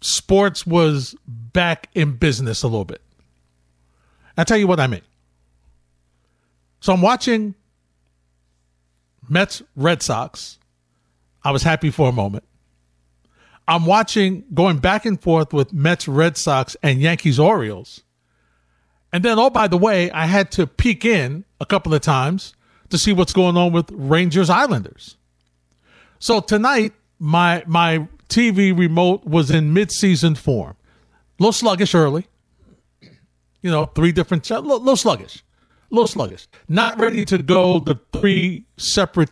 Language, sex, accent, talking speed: English, male, American, 145 wpm